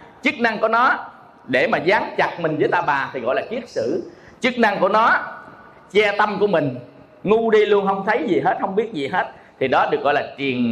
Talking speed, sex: 235 wpm, male